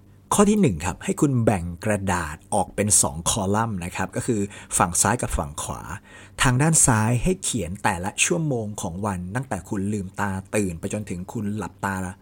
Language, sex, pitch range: Thai, male, 95-115 Hz